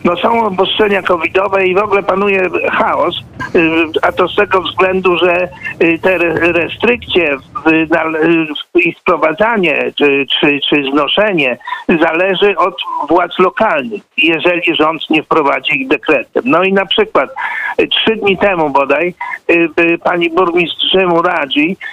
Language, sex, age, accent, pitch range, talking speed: Polish, male, 50-69, native, 165-240 Hz, 120 wpm